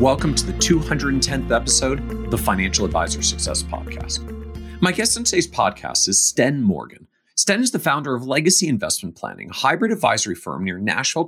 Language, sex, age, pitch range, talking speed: English, male, 40-59, 110-175 Hz, 175 wpm